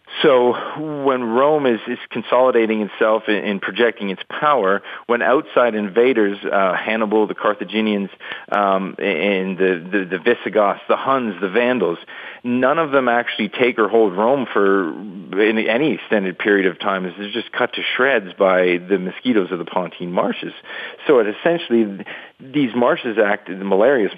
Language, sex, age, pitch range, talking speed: English, male, 40-59, 95-115 Hz, 155 wpm